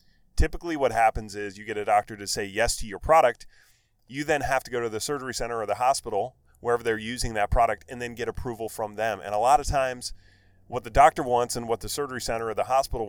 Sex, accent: male, American